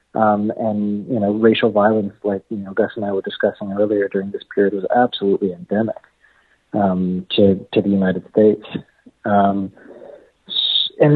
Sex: male